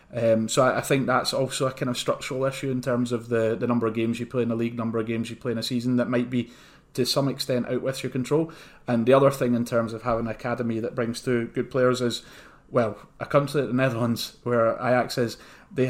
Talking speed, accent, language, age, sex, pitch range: 255 wpm, British, English, 30-49, male, 115-130 Hz